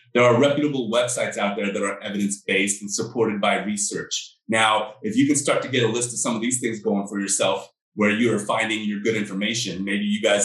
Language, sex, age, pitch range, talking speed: English, male, 30-49, 110-145 Hz, 230 wpm